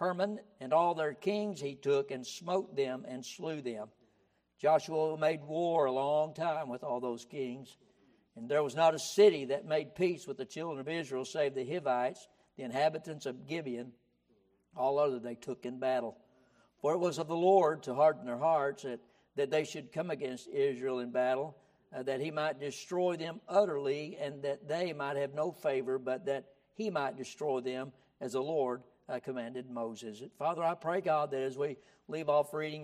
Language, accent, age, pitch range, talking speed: English, American, 60-79, 130-160 Hz, 190 wpm